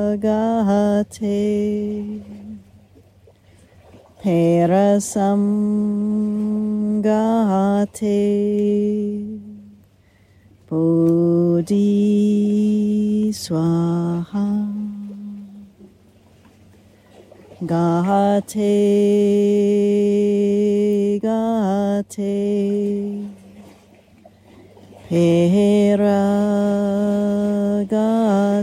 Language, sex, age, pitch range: English, female, 40-59, 170-205 Hz